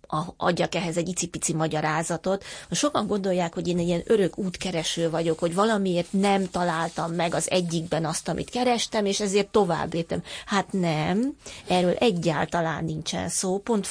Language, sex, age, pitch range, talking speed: Hungarian, female, 30-49, 165-210 Hz, 150 wpm